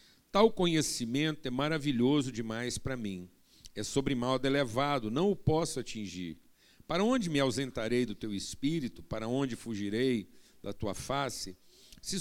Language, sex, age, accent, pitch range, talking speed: Portuguese, male, 60-79, Brazilian, 115-155 Hz, 145 wpm